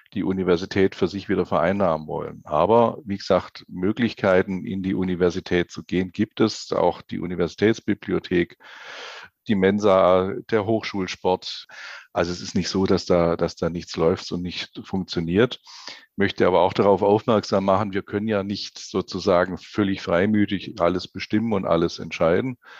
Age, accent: 50-69, German